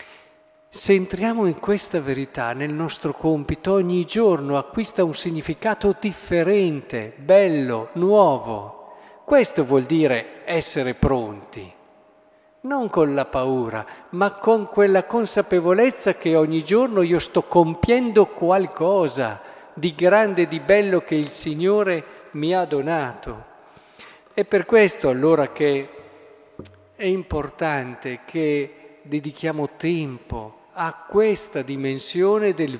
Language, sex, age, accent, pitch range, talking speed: Italian, male, 50-69, native, 150-195 Hz, 110 wpm